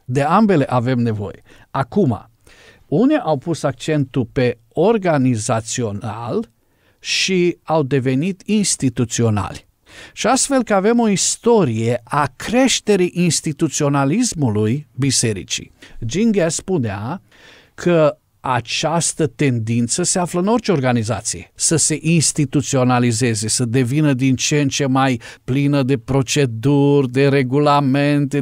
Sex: male